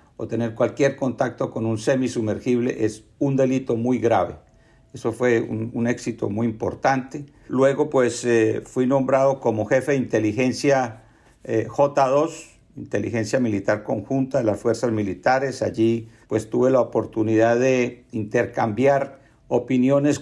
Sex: male